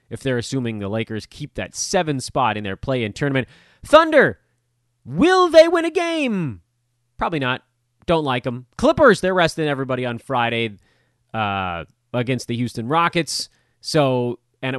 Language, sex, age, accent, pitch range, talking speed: English, male, 30-49, American, 115-150 Hz, 150 wpm